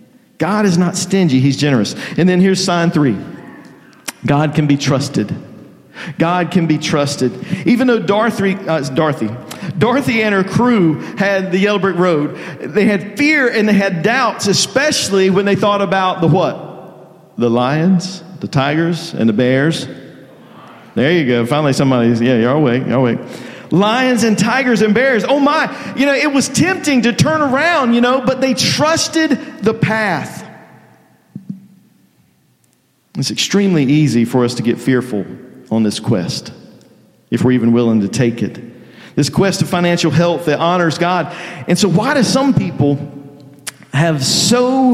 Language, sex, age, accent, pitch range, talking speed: English, male, 50-69, American, 150-235 Hz, 160 wpm